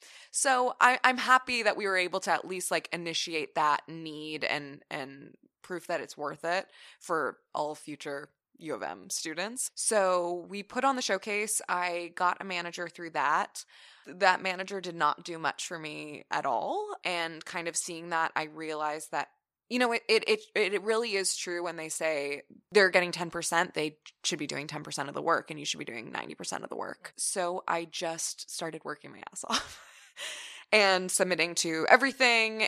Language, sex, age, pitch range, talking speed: English, female, 20-39, 160-205 Hz, 195 wpm